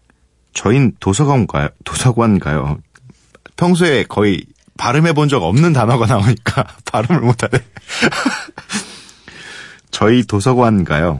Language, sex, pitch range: Korean, male, 80-125 Hz